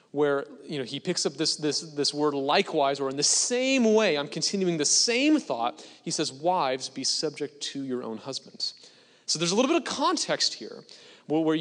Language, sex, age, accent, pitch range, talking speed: English, male, 30-49, American, 150-215 Hz, 185 wpm